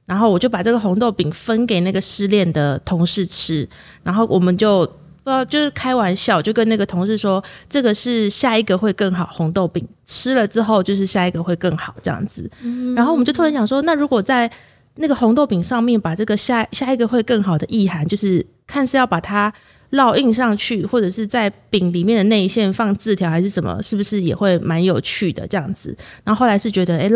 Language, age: English, 30-49